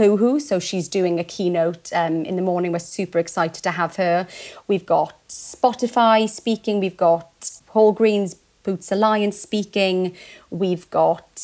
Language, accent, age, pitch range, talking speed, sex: English, British, 30-49, 170-195 Hz, 145 wpm, female